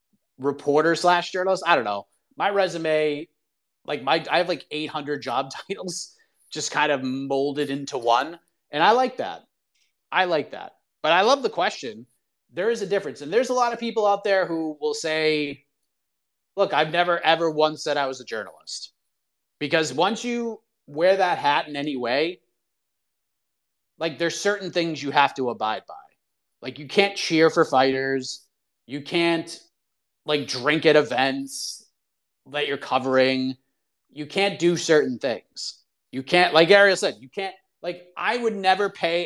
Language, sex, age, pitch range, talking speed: English, male, 30-49, 135-180 Hz, 165 wpm